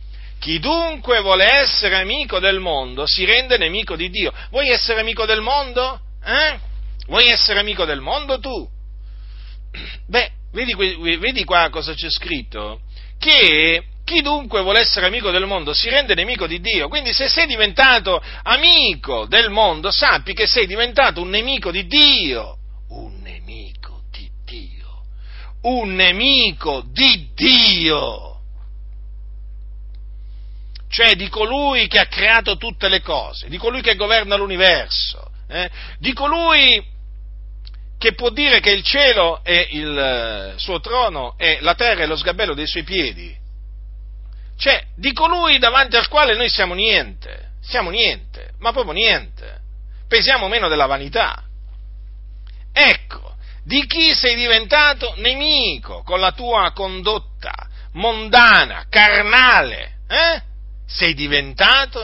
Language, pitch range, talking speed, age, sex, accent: Italian, 145-240 Hz, 130 wpm, 40-59, male, native